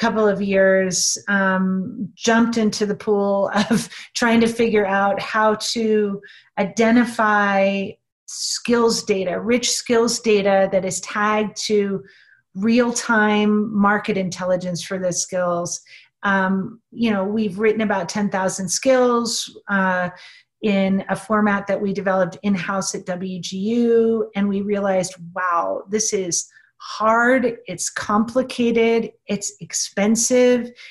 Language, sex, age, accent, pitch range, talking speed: English, female, 30-49, American, 190-225 Hz, 115 wpm